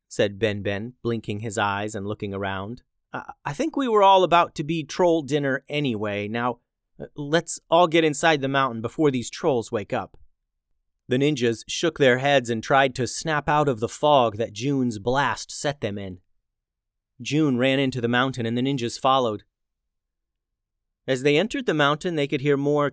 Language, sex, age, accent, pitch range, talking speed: English, male, 30-49, American, 110-145 Hz, 180 wpm